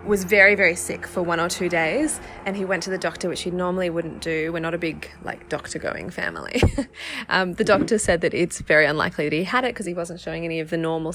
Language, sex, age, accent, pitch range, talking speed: English, female, 20-39, Australian, 165-190 Hz, 255 wpm